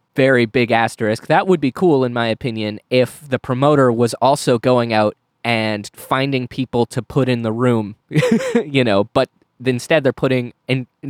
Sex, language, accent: male, English, American